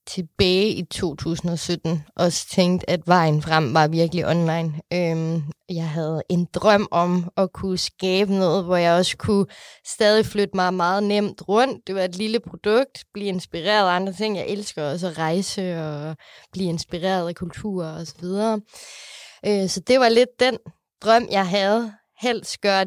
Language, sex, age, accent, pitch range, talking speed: Danish, female, 20-39, native, 170-210 Hz, 170 wpm